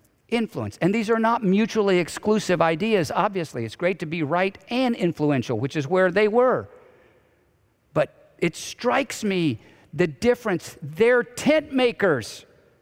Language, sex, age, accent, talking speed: English, male, 50-69, American, 140 wpm